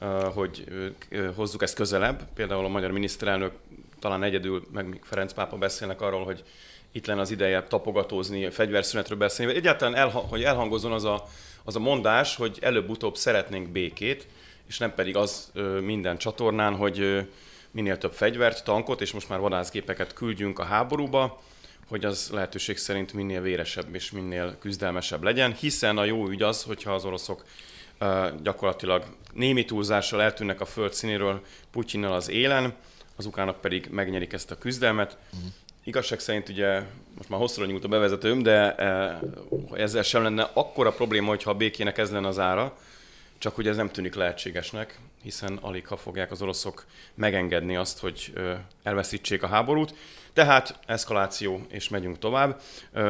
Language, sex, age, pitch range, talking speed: Hungarian, male, 30-49, 95-110 Hz, 150 wpm